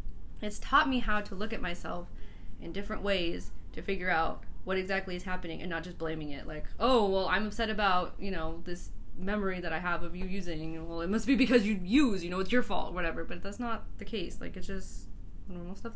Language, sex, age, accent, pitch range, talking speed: English, female, 20-39, American, 165-205 Hz, 235 wpm